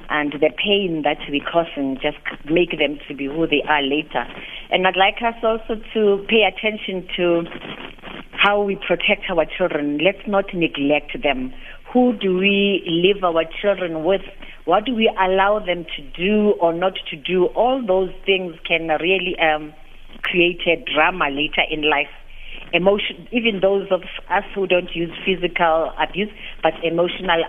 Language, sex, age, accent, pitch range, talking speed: English, female, 40-59, South African, 160-200 Hz, 165 wpm